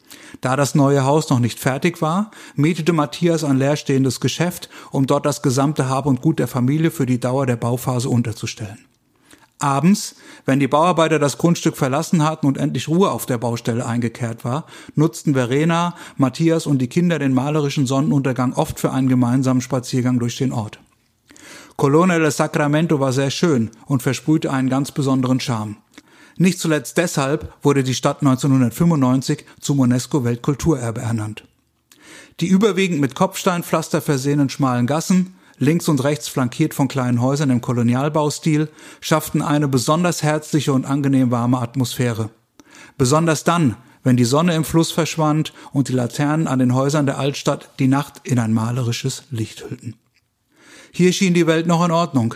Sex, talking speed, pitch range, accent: male, 155 wpm, 130-155 Hz, German